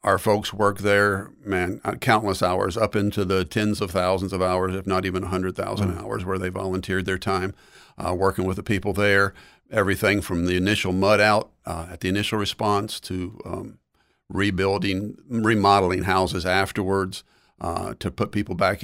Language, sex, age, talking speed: English, male, 50-69, 175 wpm